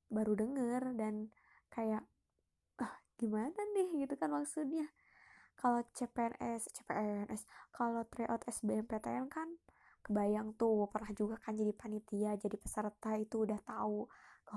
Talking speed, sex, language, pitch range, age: 125 wpm, female, Indonesian, 220-275 Hz, 20-39